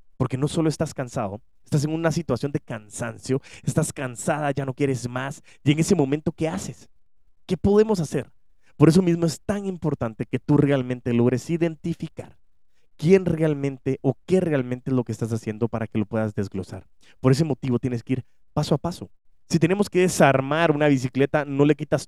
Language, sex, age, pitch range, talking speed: Spanish, male, 30-49, 110-150 Hz, 190 wpm